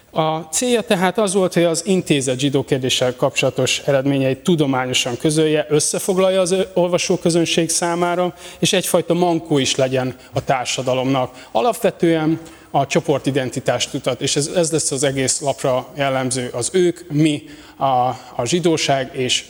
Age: 30-49